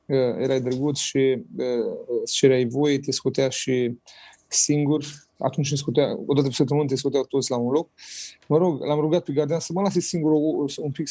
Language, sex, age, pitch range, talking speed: Romanian, male, 30-49, 130-150 Hz, 190 wpm